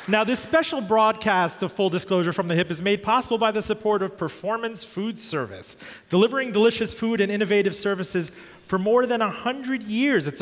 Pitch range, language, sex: 175-225 Hz, English, male